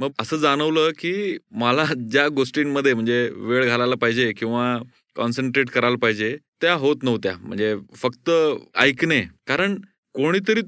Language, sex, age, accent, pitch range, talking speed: Marathi, male, 30-49, native, 125-160 Hz, 130 wpm